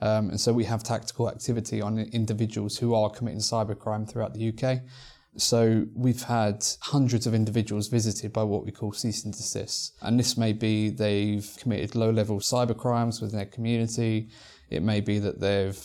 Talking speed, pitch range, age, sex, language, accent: 175 wpm, 105-115 Hz, 20-39, male, English, British